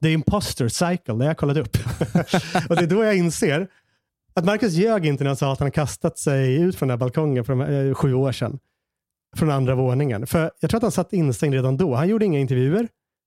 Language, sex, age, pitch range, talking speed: Swedish, male, 30-49, 125-165 Hz, 235 wpm